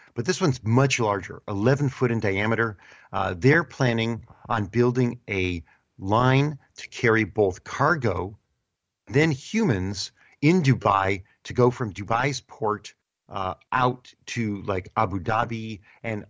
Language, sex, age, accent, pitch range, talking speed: English, male, 50-69, American, 105-140 Hz, 135 wpm